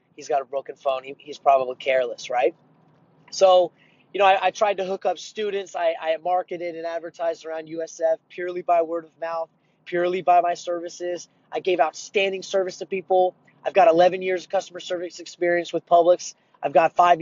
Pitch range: 160-180 Hz